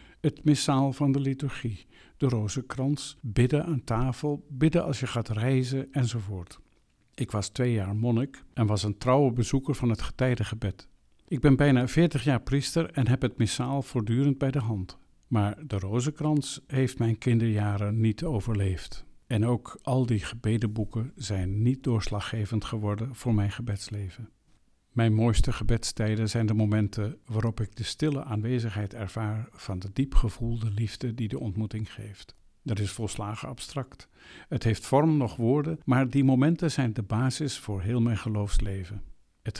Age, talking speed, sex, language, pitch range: 50-69, 155 wpm, male, Dutch, 105-130 Hz